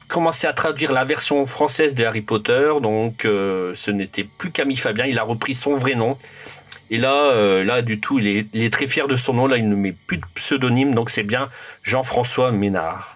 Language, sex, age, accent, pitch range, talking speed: French, male, 40-59, French, 110-145 Hz, 225 wpm